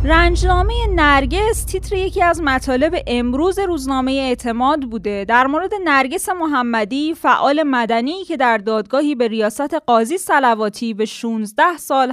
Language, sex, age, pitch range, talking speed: Persian, female, 10-29, 225-305 Hz, 130 wpm